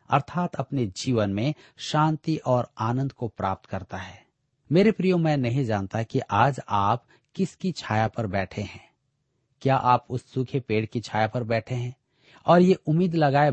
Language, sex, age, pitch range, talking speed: Hindi, male, 40-59, 110-145 Hz, 170 wpm